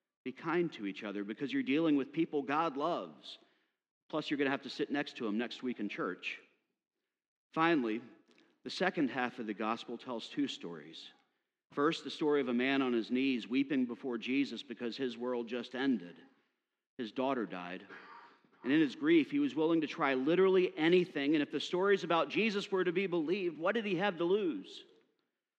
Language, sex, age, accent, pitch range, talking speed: English, male, 40-59, American, 120-180 Hz, 195 wpm